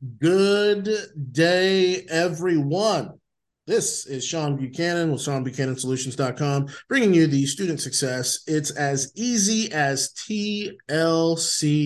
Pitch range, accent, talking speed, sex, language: 130-170 Hz, American, 95 wpm, male, English